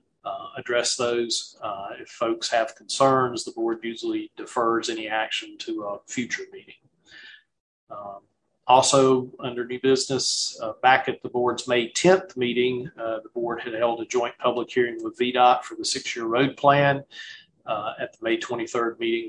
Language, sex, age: English, male, 40-59